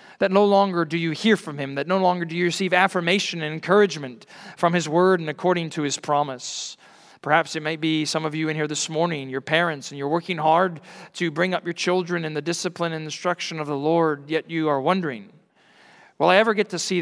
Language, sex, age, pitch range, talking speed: English, male, 40-59, 160-200 Hz, 230 wpm